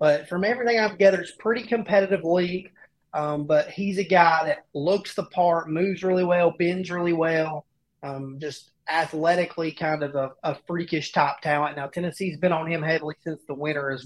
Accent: American